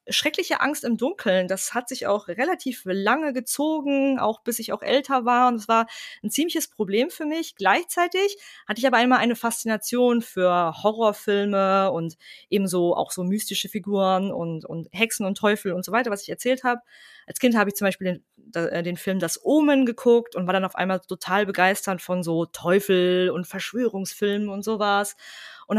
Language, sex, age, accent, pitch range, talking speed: German, female, 20-39, German, 185-245 Hz, 185 wpm